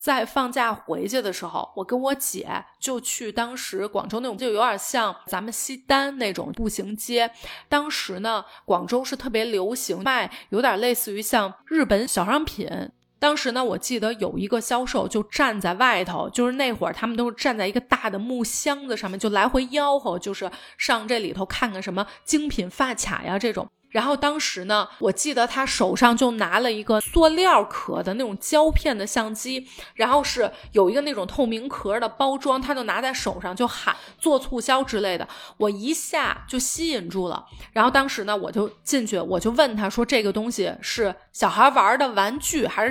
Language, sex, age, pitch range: Chinese, female, 30-49, 210-270 Hz